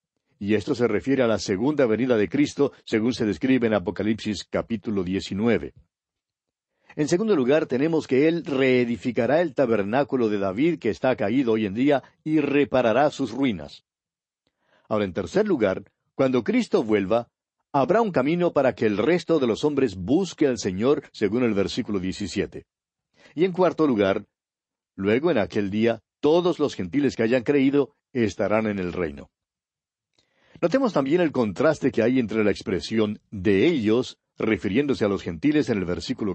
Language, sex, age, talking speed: Spanish, male, 60-79, 160 wpm